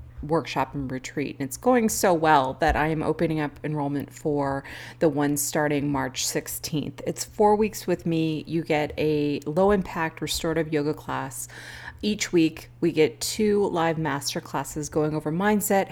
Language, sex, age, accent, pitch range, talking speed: English, female, 30-49, American, 145-185 Hz, 165 wpm